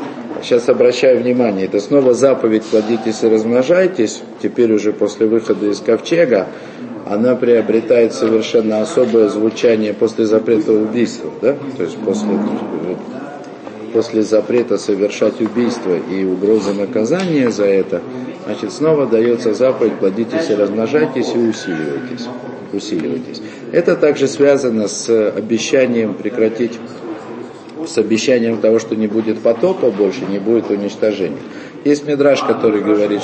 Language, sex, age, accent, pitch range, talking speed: Russian, male, 50-69, native, 110-125 Hz, 120 wpm